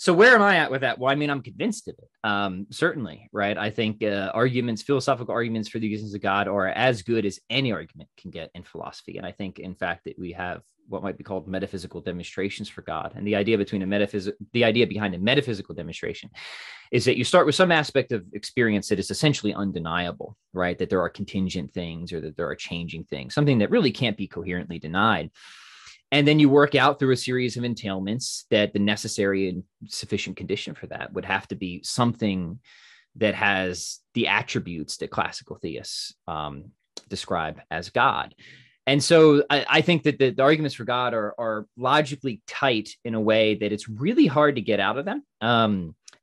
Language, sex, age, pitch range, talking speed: English, male, 20-39, 95-125 Hz, 210 wpm